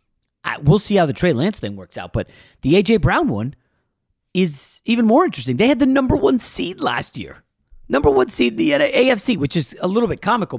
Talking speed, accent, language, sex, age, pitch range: 215 wpm, American, English, male, 40-59, 125-175 Hz